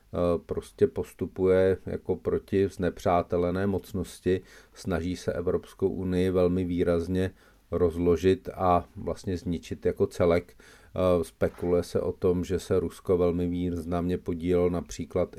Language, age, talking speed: Czech, 40-59, 115 wpm